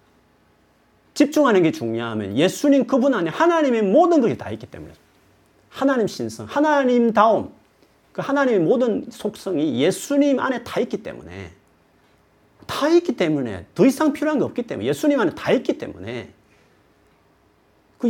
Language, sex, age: Korean, male, 40-59